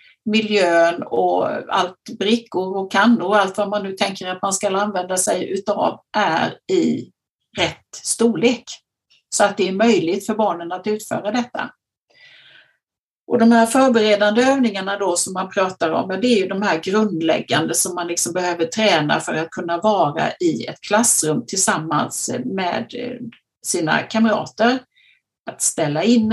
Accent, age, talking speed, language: native, 50-69, 155 wpm, Swedish